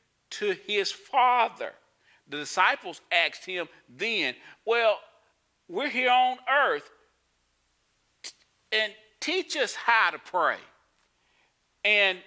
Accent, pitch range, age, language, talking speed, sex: American, 155-245 Hz, 40-59, English, 100 wpm, male